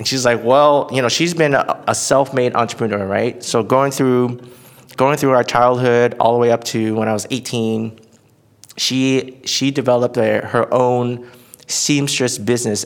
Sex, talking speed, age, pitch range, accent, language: male, 175 wpm, 30-49, 110-130 Hz, American, English